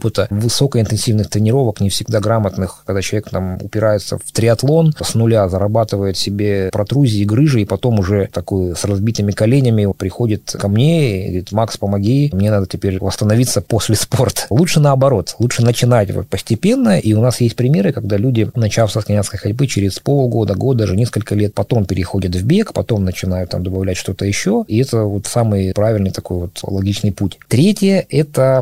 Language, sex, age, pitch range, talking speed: Russian, male, 20-39, 100-125 Hz, 170 wpm